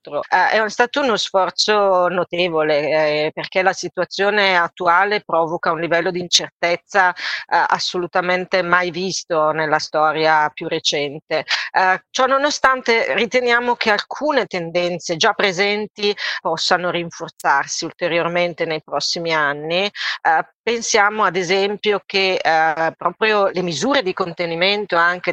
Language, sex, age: Italian, female, 40-59